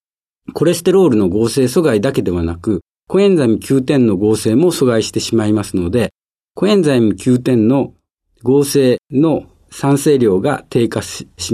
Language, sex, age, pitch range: Japanese, male, 50-69, 105-150 Hz